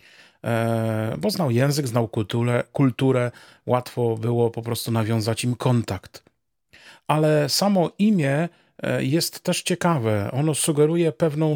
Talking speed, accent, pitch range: 115 wpm, native, 125-165 Hz